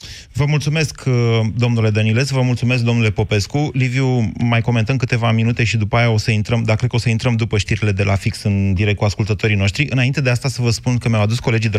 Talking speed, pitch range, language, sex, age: 235 wpm, 115-140 Hz, Romanian, male, 30-49